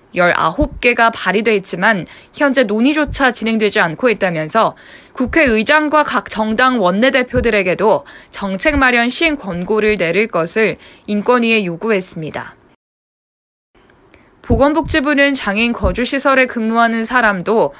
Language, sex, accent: Korean, female, native